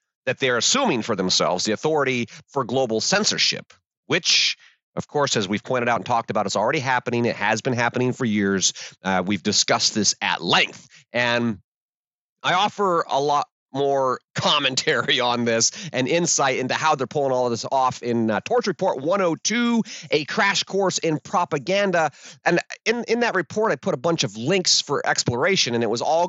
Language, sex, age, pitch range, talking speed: English, male, 30-49, 120-160 Hz, 185 wpm